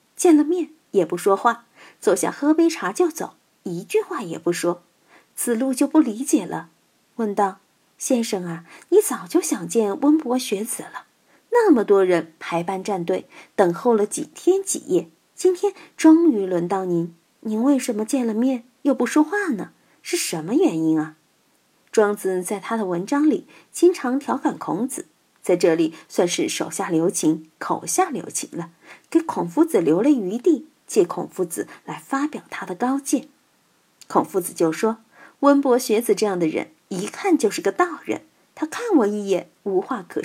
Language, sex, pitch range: Chinese, female, 200-320 Hz